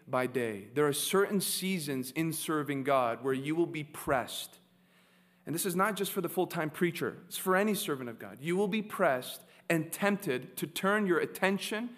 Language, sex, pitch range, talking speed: English, male, 160-200 Hz, 195 wpm